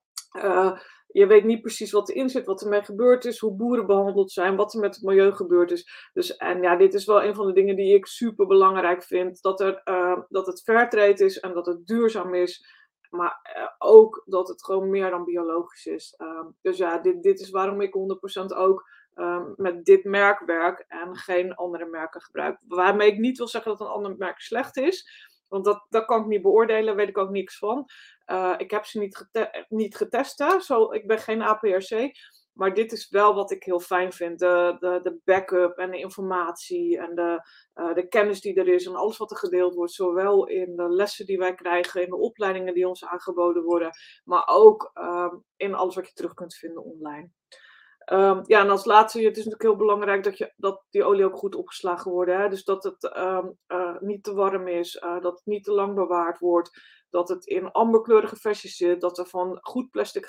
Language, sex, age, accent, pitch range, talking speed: Dutch, female, 20-39, Dutch, 180-215 Hz, 210 wpm